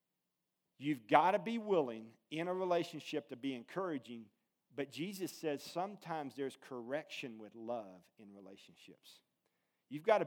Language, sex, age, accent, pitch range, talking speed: English, male, 40-59, American, 120-175 Hz, 140 wpm